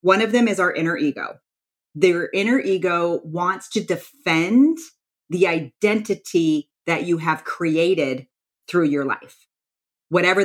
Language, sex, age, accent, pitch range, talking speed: English, female, 30-49, American, 155-195 Hz, 130 wpm